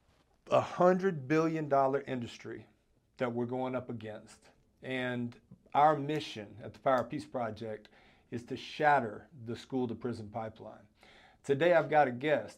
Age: 50-69